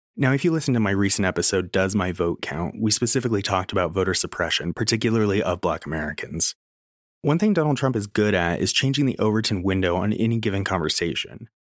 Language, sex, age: English, male, 30-49